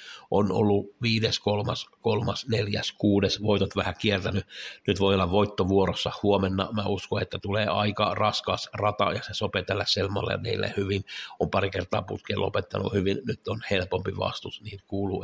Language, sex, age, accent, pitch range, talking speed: Finnish, male, 60-79, native, 95-105 Hz, 160 wpm